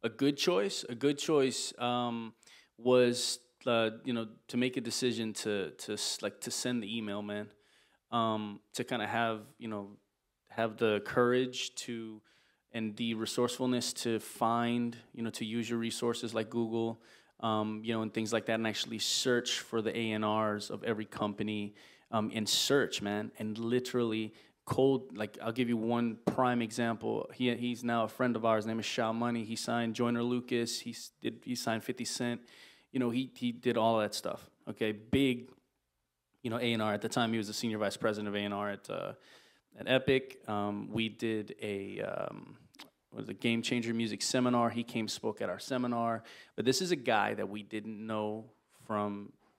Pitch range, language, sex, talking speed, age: 110-120 Hz, English, male, 185 wpm, 20-39